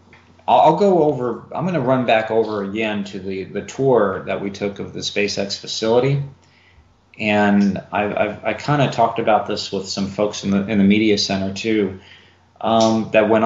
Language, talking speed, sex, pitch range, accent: English, 195 wpm, male, 100-125 Hz, American